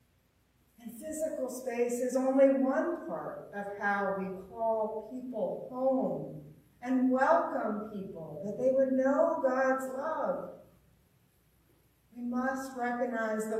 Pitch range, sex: 220-280 Hz, female